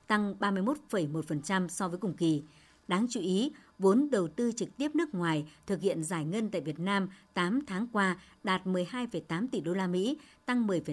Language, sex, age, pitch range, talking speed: Vietnamese, male, 60-79, 180-230 Hz, 180 wpm